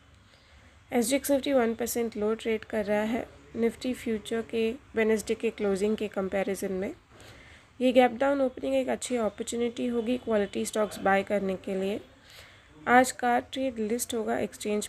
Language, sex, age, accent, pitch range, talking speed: Hindi, female, 20-39, native, 195-240 Hz, 155 wpm